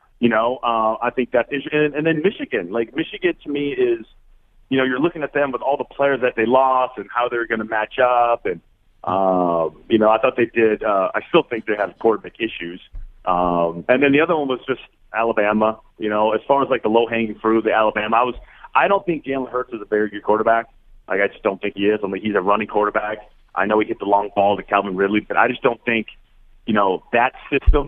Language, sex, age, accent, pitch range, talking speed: English, male, 30-49, American, 105-140 Hz, 260 wpm